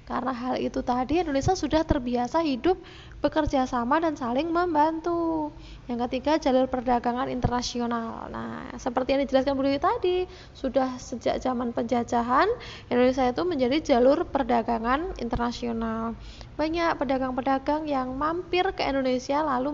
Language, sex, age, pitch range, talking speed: Indonesian, female, 20-39, 245-295 Hz, 120 wpm